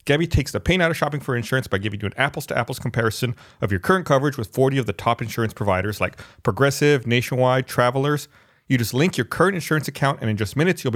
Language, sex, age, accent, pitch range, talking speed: English, male, 30-49, American, 110-140 Hz, 240 wpm